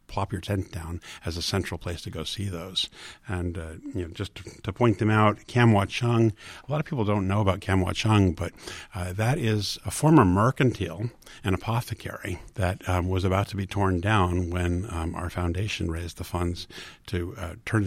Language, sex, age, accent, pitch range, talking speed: English, male, 50-69, American, 90-110 Hz, 200 wpm